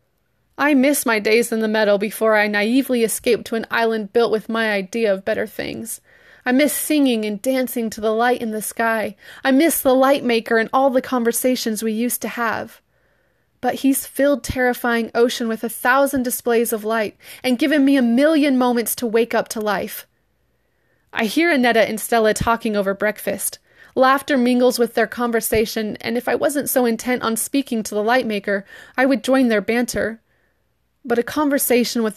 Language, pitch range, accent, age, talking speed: English, 215-250 Hz, American, 20-39, 190 wpm